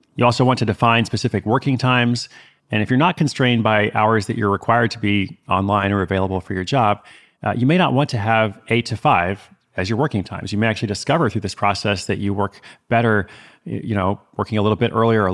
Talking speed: 235 wpm